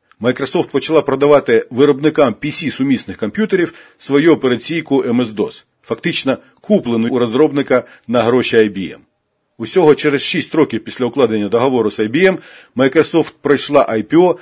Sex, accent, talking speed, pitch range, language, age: male, native, 120 wpm, 105-150 Hz, Ukrainian, 50-69